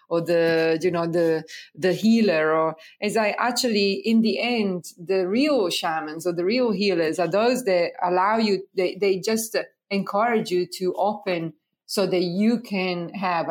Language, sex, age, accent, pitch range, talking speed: English, female, 30-49, Italian, 175-210 Hz, 170 wpm